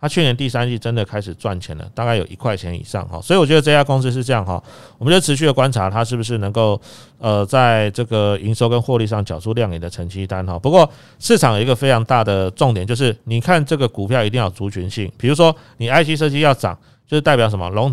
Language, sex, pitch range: Chinese, male, 110-140 Hz